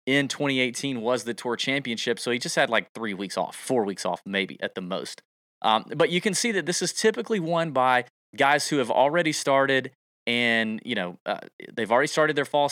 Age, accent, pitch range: 30-49, American, 115-155 Hz